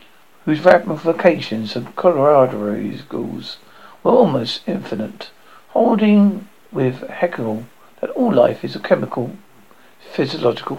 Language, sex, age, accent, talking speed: English, male, 60-79, British, 100 wpm